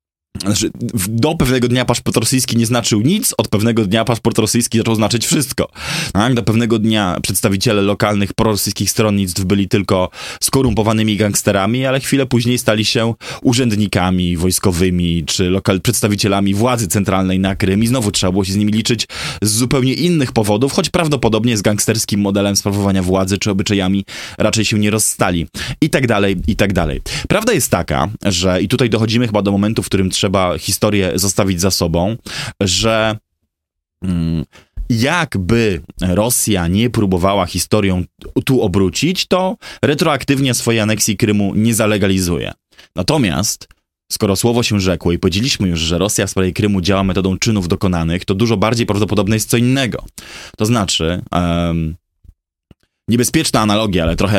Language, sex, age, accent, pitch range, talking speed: Polish, male, 20-39, native, 95-115 Hz, 150 wpm